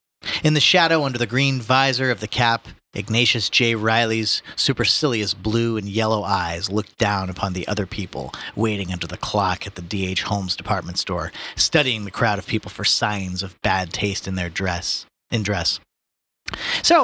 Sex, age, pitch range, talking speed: male, 30-49, 100-135 Hz, 175 wpm